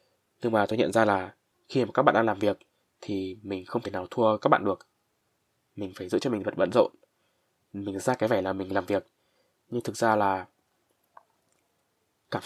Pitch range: 95-120 Hz